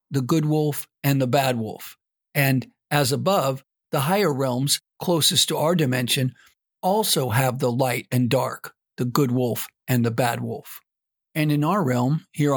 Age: 50-69